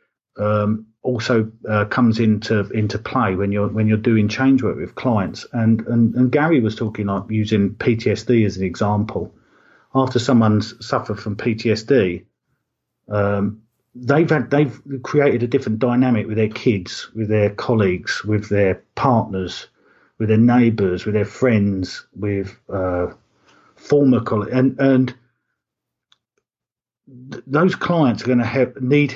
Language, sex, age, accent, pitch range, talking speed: English, male, 40-59, British, 105-125 Hz, 140 wpm